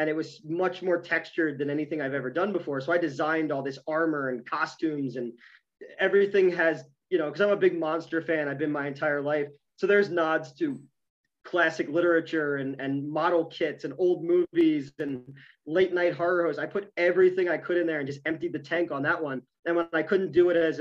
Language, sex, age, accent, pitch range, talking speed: English, male, 30-49, American, 140-175 Hz, 220 wpm